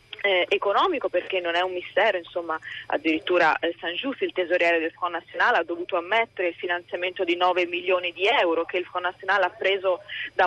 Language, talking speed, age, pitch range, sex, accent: Italian, 195 wpm, 30-49, 175-220 Hz, female, native